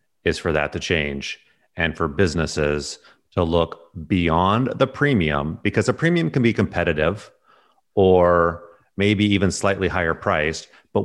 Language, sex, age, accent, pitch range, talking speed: English, male, 30-49, American, 80-100 Hz, 140 wpm